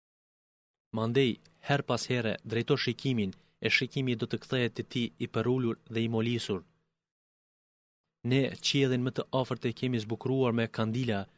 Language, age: Greek, 30-49